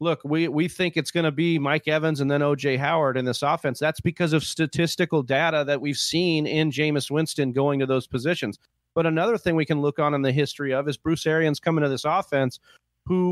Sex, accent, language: male, American, English